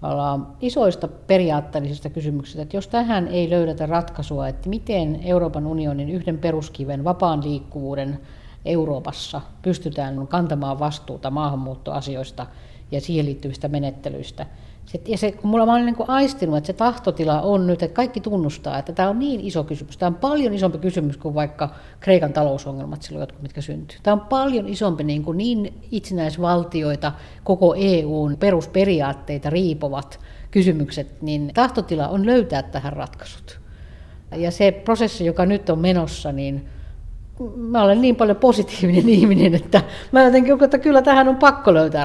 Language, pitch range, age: Finnish, 145-205 Hz, 60-79